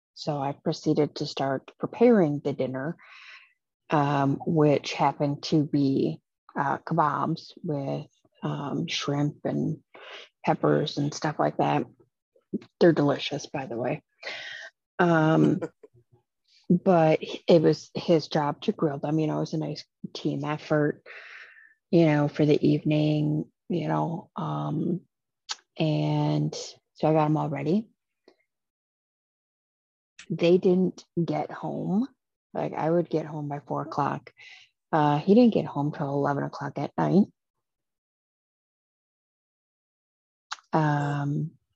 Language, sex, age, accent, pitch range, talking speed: English, female, 30-49, American, 145-170 Hz, 120 wpm